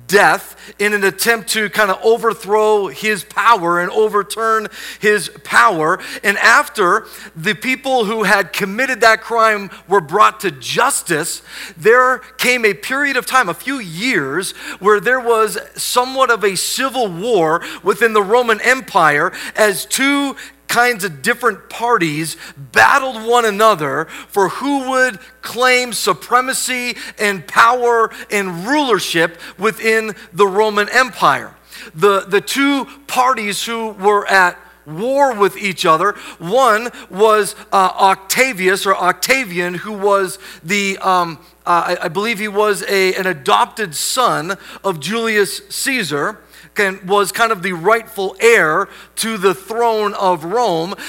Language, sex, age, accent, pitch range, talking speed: English, male, 40-59, American, 195-235 Hz, 135 wpm